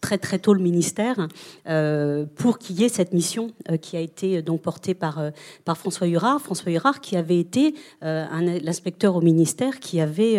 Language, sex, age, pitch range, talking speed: French, female, 40-59, 165-200 Hz, 195 wpm